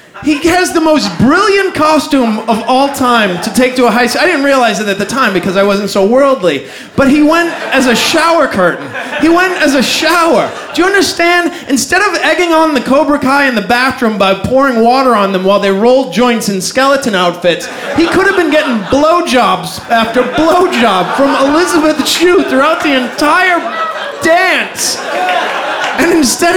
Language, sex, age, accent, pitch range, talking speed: English, male, 30-49, American, 245-335 Hz, 185 wpm